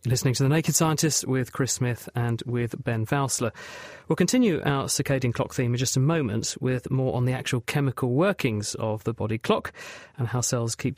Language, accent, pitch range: English, British, 120-150 Hz